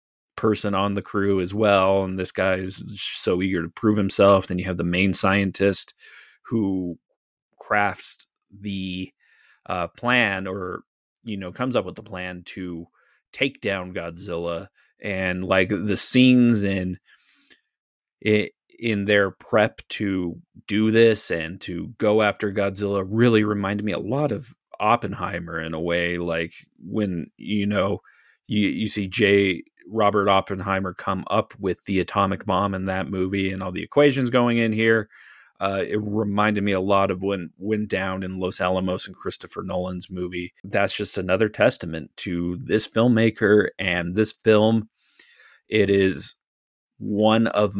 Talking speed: 155 wpm